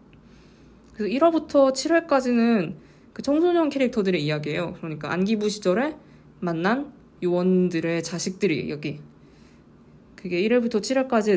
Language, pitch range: Korean, 175-225 Hz